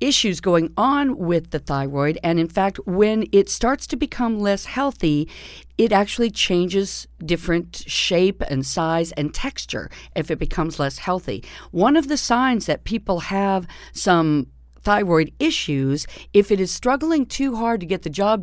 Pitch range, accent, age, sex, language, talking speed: 145-195 Hz, American, 50-69, female, English, 165 wpm